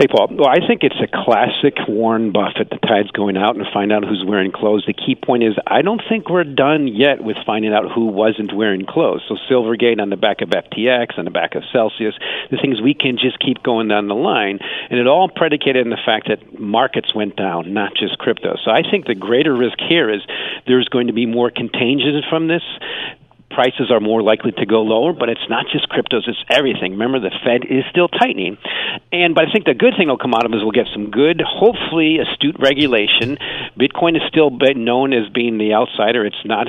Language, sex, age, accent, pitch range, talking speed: English, male, 50-69, American, 105-140 Hz, 225 wpm